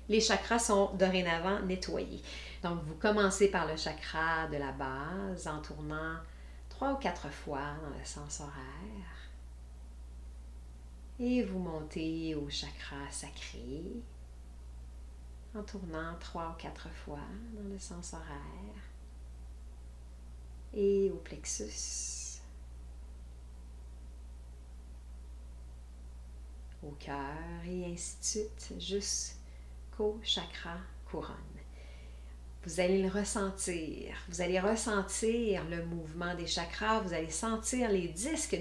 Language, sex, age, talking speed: French, female, 40-59, 105 wpm